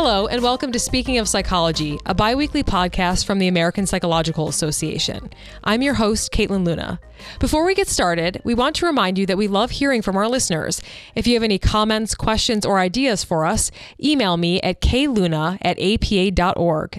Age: 20-39